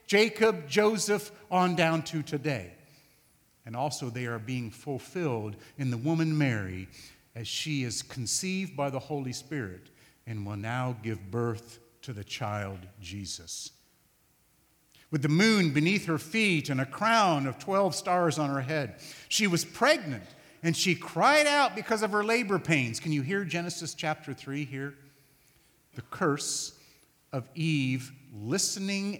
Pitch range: 115-160 Hz